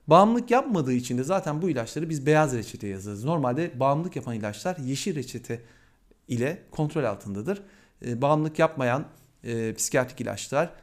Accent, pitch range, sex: native, 125-180 Hz, male